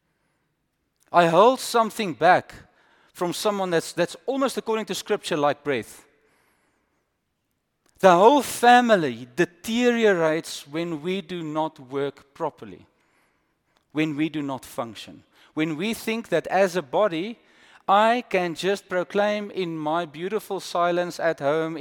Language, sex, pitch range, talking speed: English, male, 140-190 Hz, 125 wpm